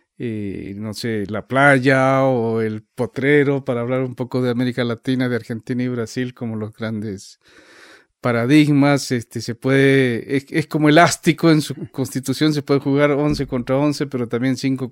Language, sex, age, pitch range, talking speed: English, male, 40-59, 120-145 Hz, 170 wpm